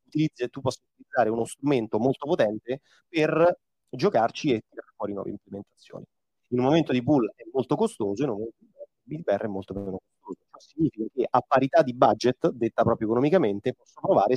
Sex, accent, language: male, native, Italian